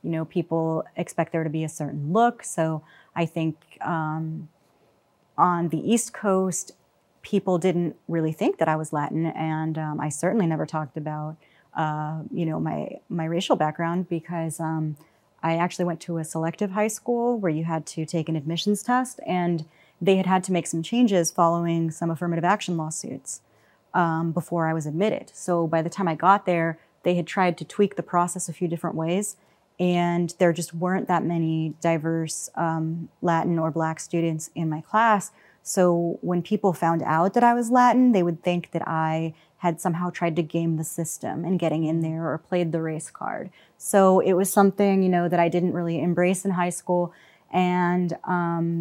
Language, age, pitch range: English, 30-49, 160-185 Hz